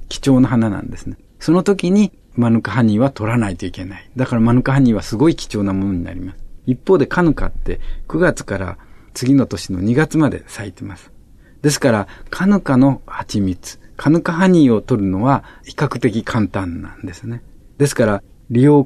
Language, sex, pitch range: Japanese, male, 95-135 Hz